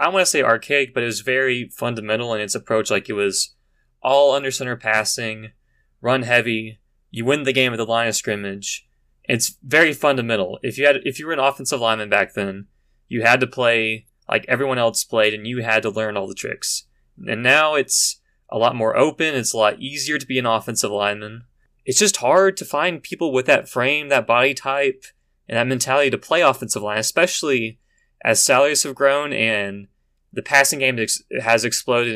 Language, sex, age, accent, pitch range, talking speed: English, male, 20-39, American, 110-140 Hz, 200 wpm